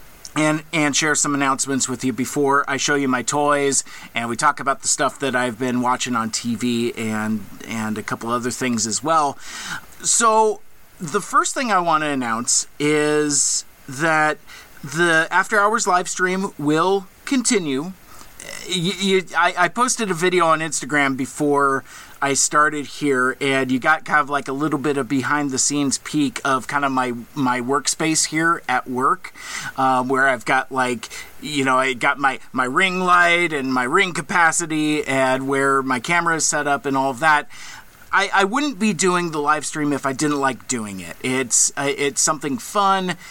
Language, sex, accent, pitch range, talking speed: English, male, American, 130-175 Hz, 185 wpm